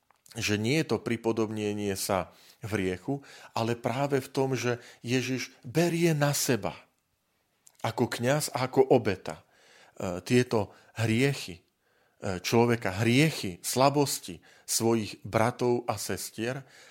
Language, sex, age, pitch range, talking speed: Slovak, male, 40-59, 110-135 Hz, 110 wpm